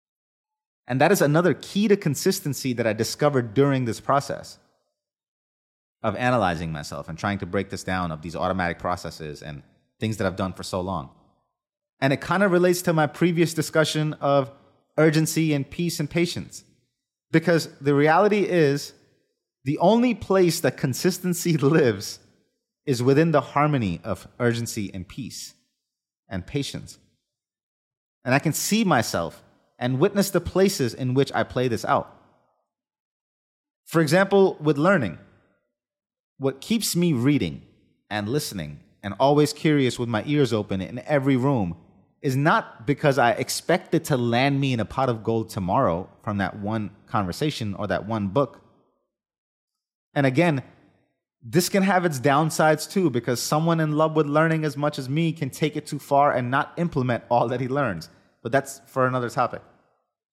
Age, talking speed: 30-49, 160 wpm